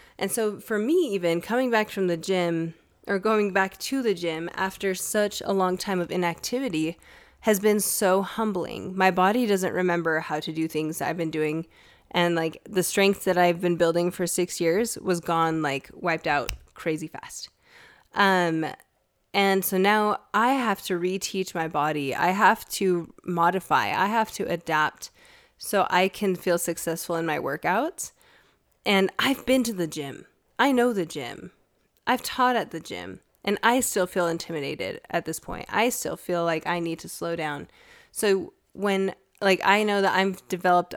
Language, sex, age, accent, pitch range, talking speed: English, female, 10-29, American, 170-205 Hz, 180 wpm